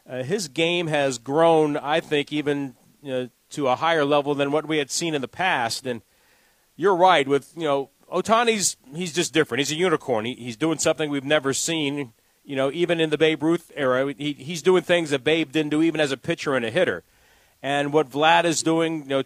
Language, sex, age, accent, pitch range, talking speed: English, male, 40-59, American, 140-170 Hz, 225 wpm